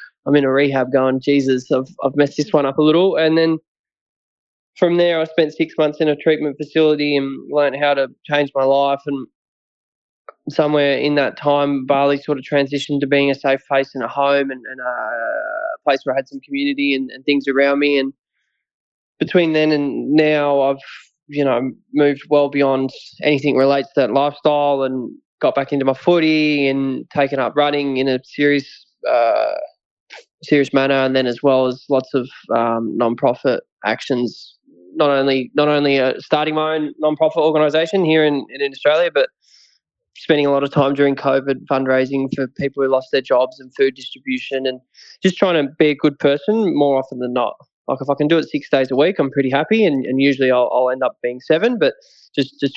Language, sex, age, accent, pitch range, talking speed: English, male, 20-39, Australian, 135-150 Hz, 200 wpm